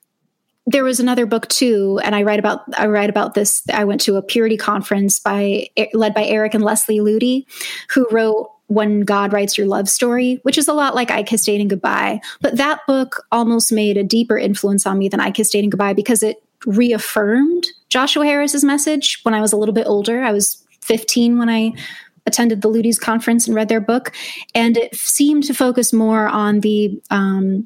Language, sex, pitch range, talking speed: English, female, 205-245 Hz, 200 wpm